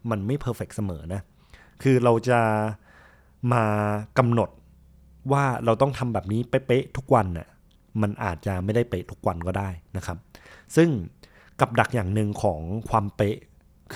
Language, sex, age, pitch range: Thai, male, 20-39, 95-120 Hz